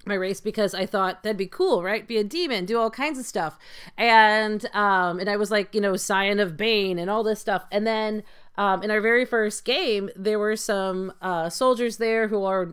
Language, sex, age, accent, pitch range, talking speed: English, female, 30-49, American, 195-250 Hz, 225 wpm